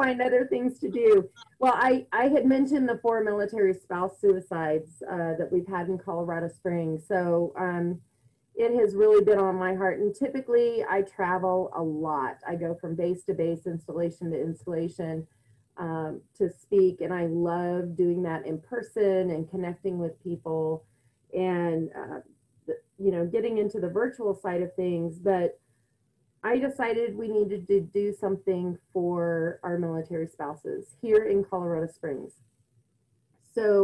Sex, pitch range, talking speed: female, 170-205 Hz, 155 wpm